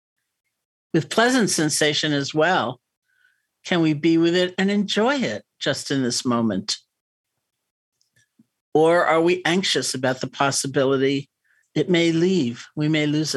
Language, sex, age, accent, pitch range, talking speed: English, male, 60-79, American, 135-175 Hz, 135 wpm